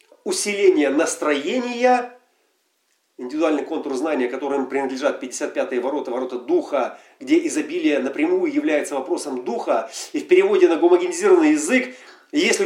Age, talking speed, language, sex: 40-59, 115 wpm, Russian, male